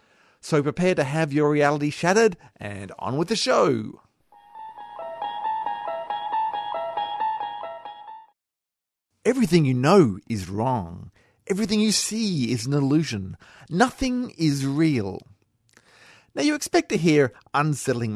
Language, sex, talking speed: English, male, 105 wpm